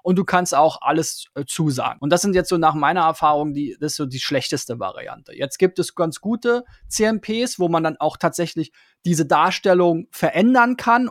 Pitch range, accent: 155-200 Hz, German